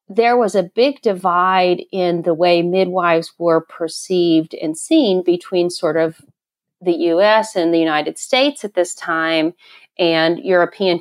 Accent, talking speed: American, 145 wpm